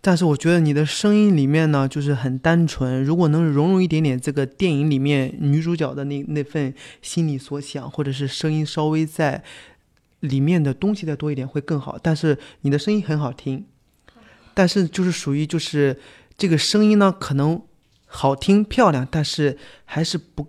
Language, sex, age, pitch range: Chinese, male, 20-39, 135-165 Hz